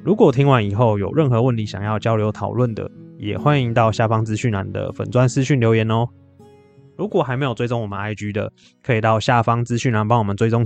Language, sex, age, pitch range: Chinese, male, 20-39, 110-130 Hz